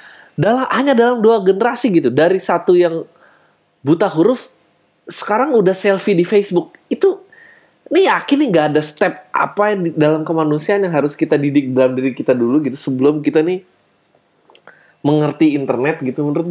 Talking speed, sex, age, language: 155 wpm, male, 20-39, Indonesian